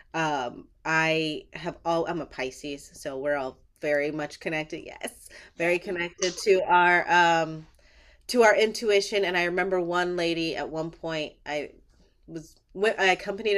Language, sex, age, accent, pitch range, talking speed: English, female, 30-49, American, 150-185 Hz, 155 wpm